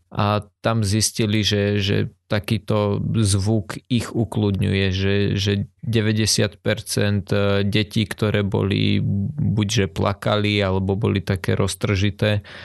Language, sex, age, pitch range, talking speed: Slovak, male, 20-39, 100-110 Hz, 100 wpm